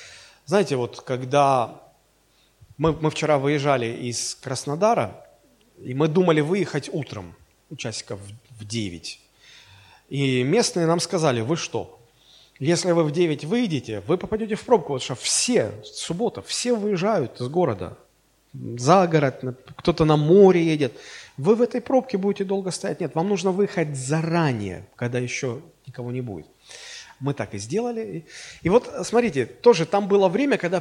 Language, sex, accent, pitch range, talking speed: Russian, male, native, 135-200 Hz, 145 wpm